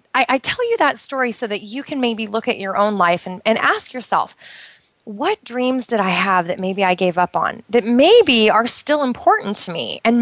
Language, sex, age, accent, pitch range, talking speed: English, female, 20-39, American, 210-270 Hz, 225 wpm